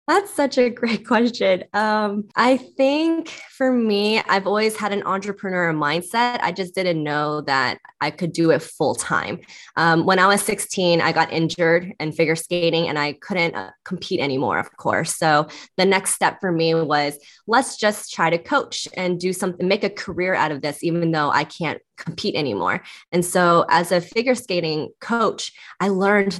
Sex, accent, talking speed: female, American, 190 wpm